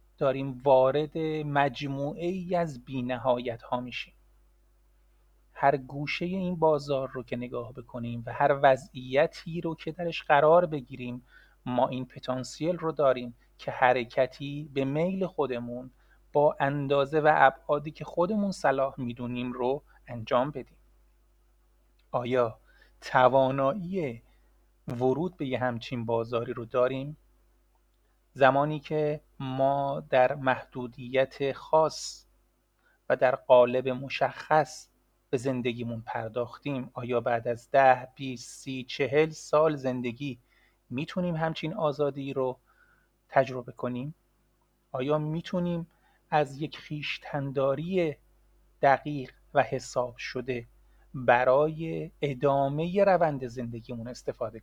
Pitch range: 125-150 Hz